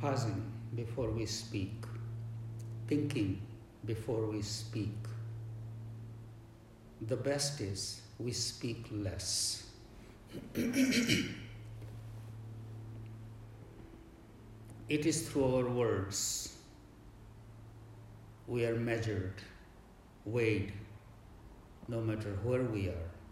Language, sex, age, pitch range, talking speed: English, male, 60-79, 105-115 Hz, 70 wpm